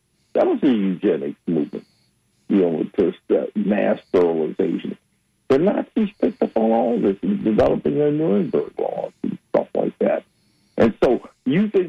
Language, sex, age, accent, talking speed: English, male, 60-79, American, 160 wpm